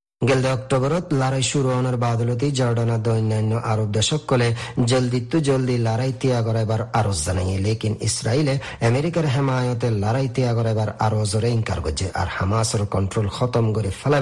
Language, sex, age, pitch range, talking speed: Bengali, male, 40-59, 110-135 Hz, 130 wpm